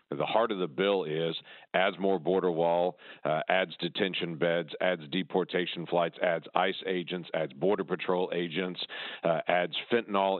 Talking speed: 155 wpm